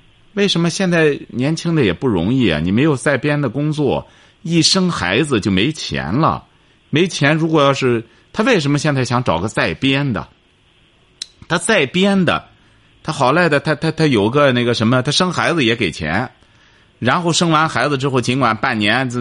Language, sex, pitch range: Chinese, male, 110-165 Hz